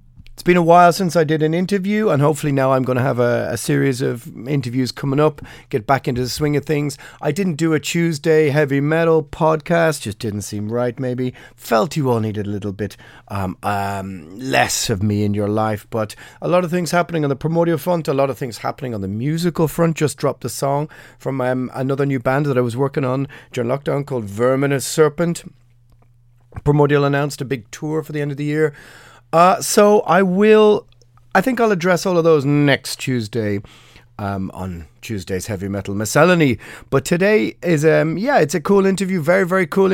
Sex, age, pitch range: male, 30-49, 120-155 Hz